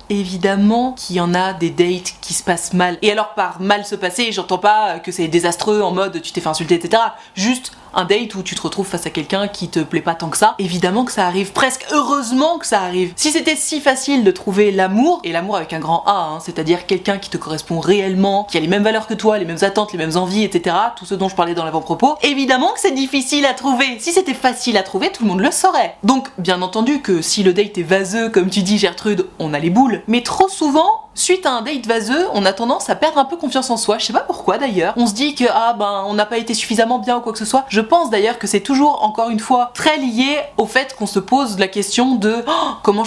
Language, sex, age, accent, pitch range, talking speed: French, female, 20-39, French, 190-260 Hz, 265 wpm